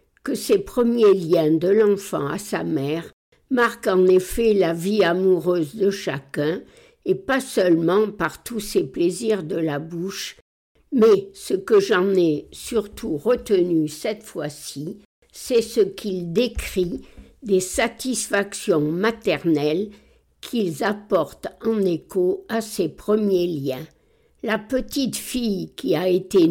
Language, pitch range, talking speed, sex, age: French, 165-225 Hz, 130 wpm, female, 60-79